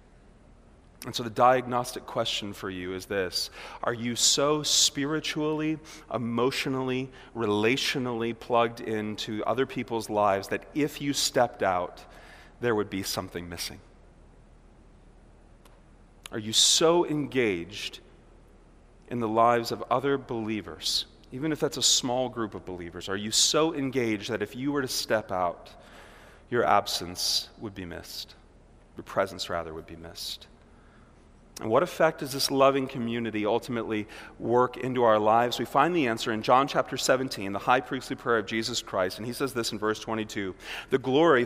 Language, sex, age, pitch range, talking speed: English, male, 30-49, 105-140 Hz, 155 wpm